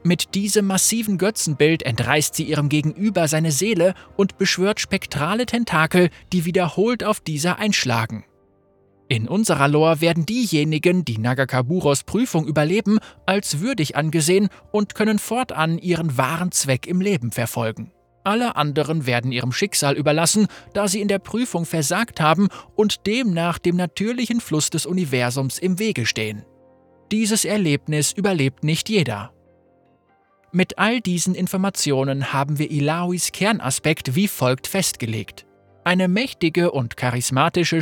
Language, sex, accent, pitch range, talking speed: German, male, German, 135-195 Hz, 130 wpm